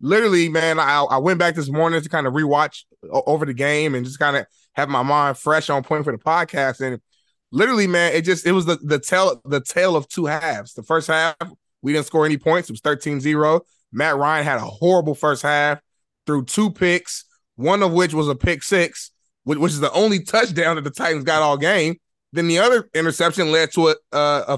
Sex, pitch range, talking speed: male, 150-195 Hz, 220 wpm